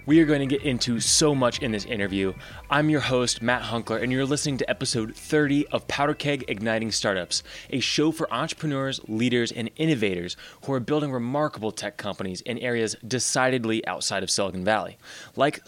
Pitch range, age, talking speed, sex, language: 110-145 Hz, 20-39, 185 wpm, male, English